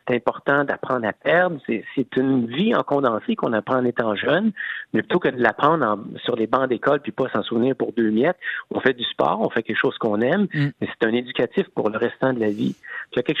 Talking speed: 255 wpm